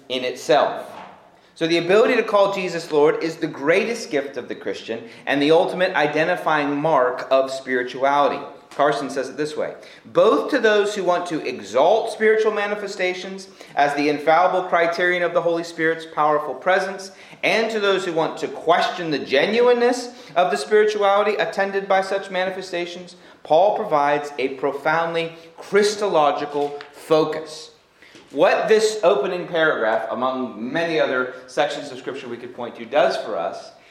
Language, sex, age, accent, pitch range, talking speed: English, male, 30-49, American, 150-200 Hz, 150 wpm